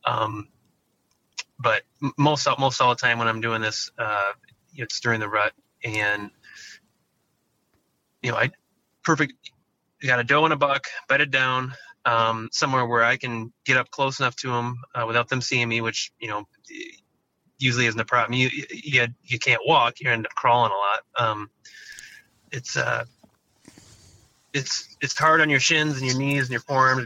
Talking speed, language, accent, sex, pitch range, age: 175 wpm, English, American, male, 115-140 Hz, 30-49